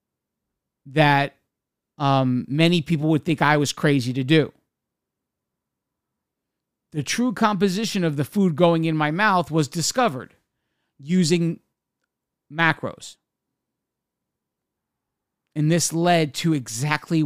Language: English